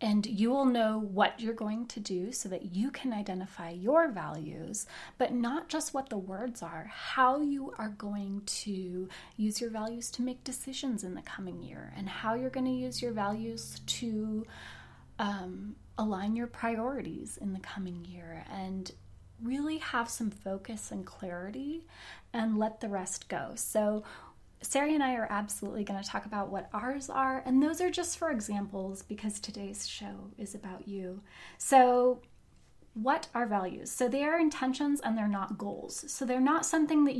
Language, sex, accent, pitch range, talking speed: English, female, American, 195-255 Hz, 175 wpm